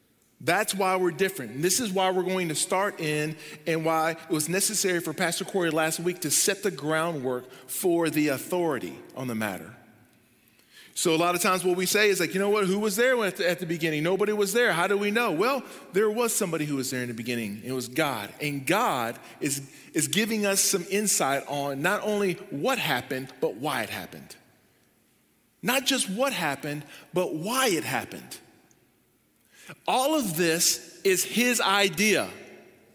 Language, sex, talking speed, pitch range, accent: English, male, 185 wpm, 170-235 Hz, American